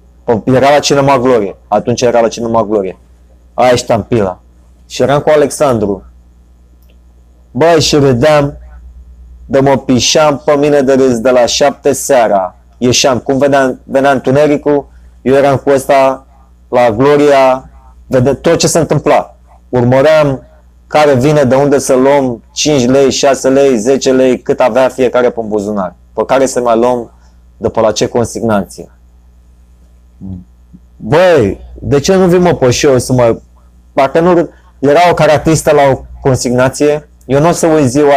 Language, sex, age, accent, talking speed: Romanian, male, 20-39, native, 150 wpm